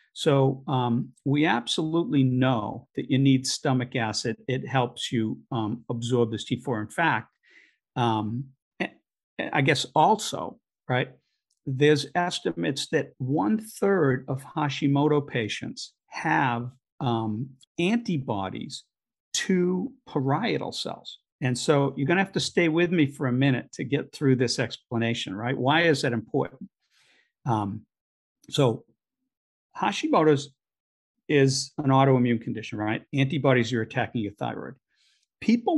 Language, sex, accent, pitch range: English, male, American, 120-150 Hz